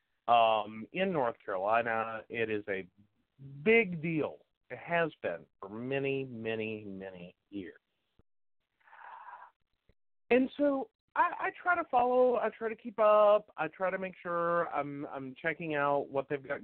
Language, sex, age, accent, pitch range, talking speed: English, male, 40-59, American, 120-190 Hz, 150 wpm